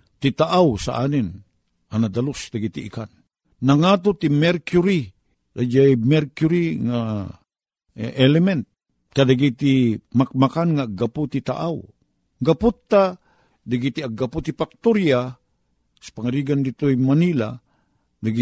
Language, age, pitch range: Filipino, 50-69, 110-150 Hz